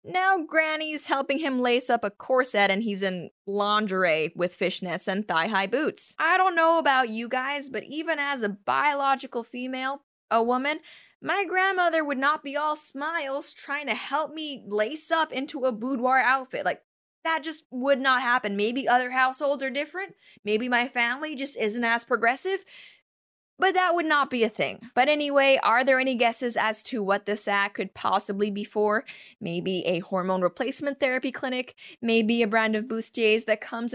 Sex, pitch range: female, 225-305 Hz